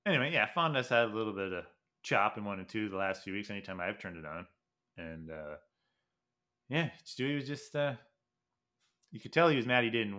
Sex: male